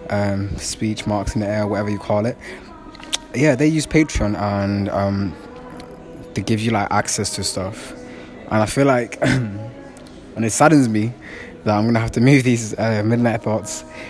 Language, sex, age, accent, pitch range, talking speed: English, male, 20-39, British, 100-120 Hz, 175 wpm